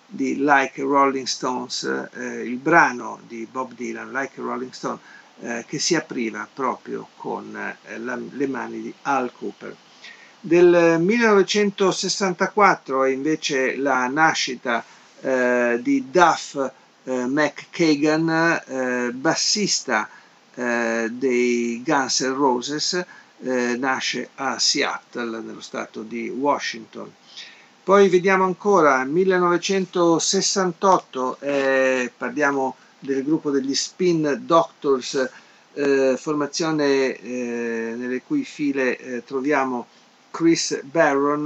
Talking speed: 100 wpm